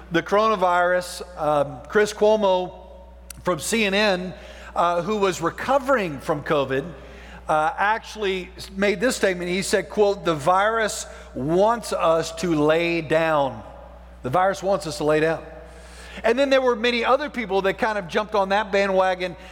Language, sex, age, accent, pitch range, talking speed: English, male, 50-69, American, 175-230 Hz, 150 wpm